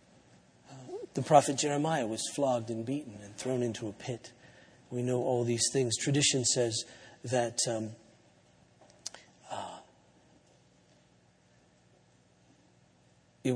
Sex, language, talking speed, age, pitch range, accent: male, English, 100 wpm, 40-59, 115-145 Hz, American